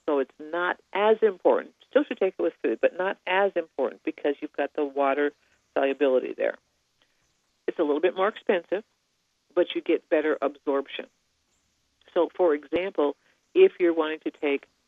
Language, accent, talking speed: English, American, 165 wpm